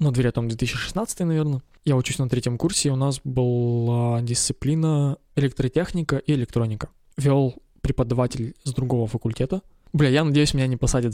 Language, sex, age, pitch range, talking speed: Russian, male, 20-39, 120-150 Hz, 155 wpm